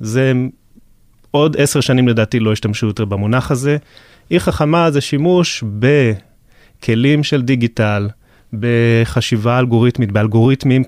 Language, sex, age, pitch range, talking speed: Hebrew, male, 30-49, 110-135 Hz, 110 wpm